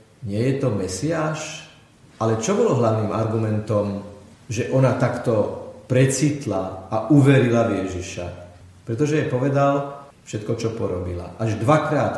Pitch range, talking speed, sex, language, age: 110-135 Hz, 120 wpm, male, Slovak, 40-59